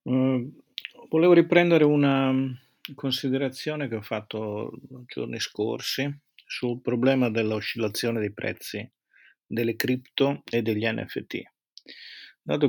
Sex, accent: male, native